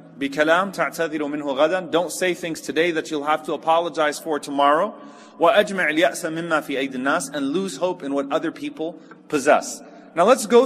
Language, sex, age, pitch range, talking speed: English, male, 30-49, 150-185 Hz, 135 wpm